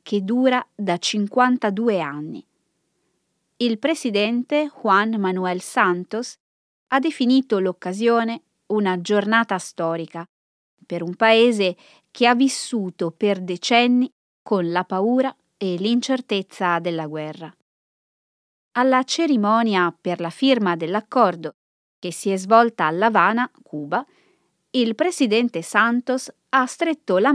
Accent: native